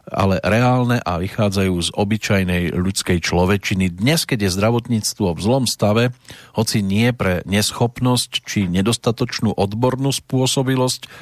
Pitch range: 95-115 Hz